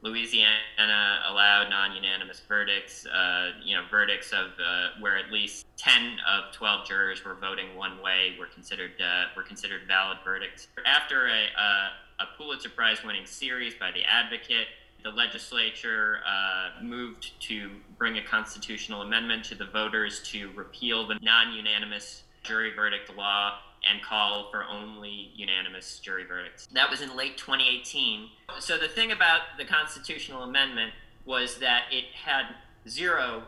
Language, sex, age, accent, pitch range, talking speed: English, male, 20-39, American, 100-125 Hz, 145 wpm